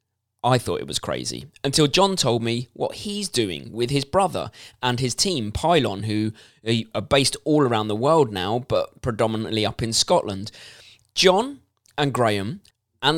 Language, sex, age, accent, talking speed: English, male, 20-39, British, 165 wpm